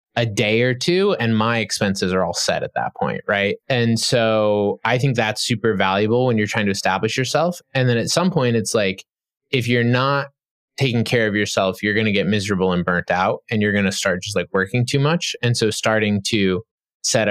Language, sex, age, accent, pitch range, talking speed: English, male, 20-39, American, 100-125 Hz, 220 wpm